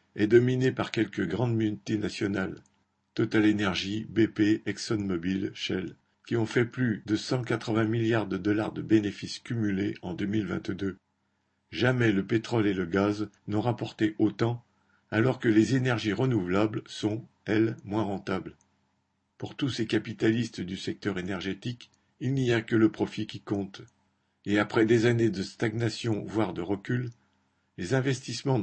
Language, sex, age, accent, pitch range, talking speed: French, male, 60-79, French, 100-120 Hz, 145 wpm